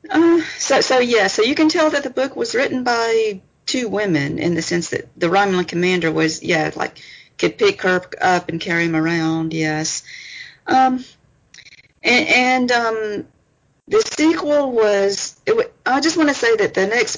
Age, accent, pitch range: 40-59, American, 165-220 Hz